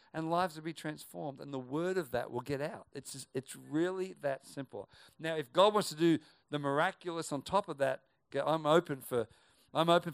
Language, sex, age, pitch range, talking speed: English, male, 50-69, 130-165 Hz, 215 wpm